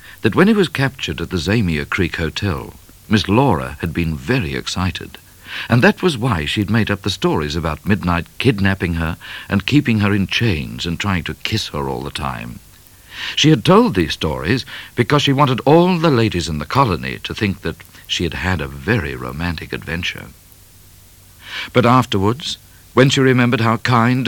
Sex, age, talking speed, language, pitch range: male, 60-79, 180 wpm, English, 85-120 Hz